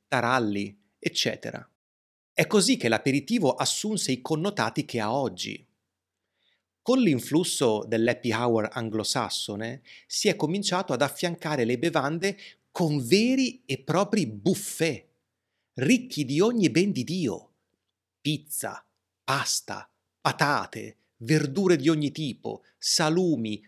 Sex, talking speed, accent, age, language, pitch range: male, 110 wpm, native, 30-49, Italian, 115-175 Hz